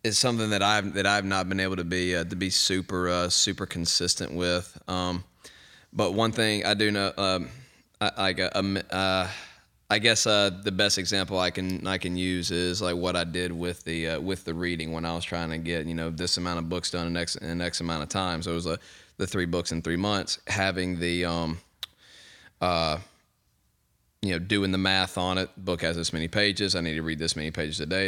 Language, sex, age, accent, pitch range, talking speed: English, male, 20-39, American, 85-95 Hz, 230 wpm